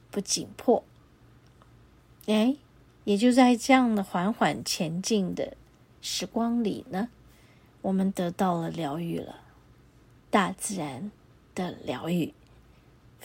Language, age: Chinese, 20-39